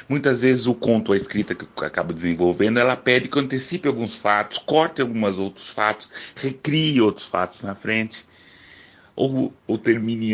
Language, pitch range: Portuguese, 90-120 Hz